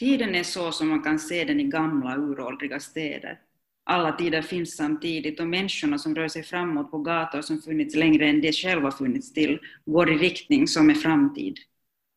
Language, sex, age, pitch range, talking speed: Finnish, female, 30-49, 155-260 Hz, 185 wpm